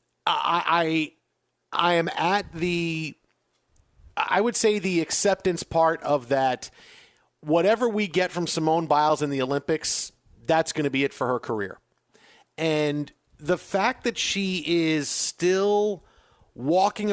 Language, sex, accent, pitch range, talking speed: English, male, American, 145-175 Hz, 135 wpm